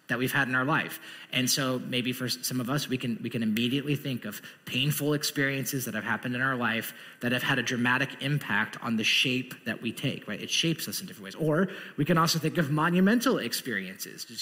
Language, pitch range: English, 120-165 Hz